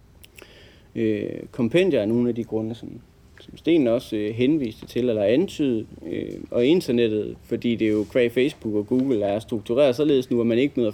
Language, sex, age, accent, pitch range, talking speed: English, male, 30-49, Danish, 110-135 Hz, 170 wpm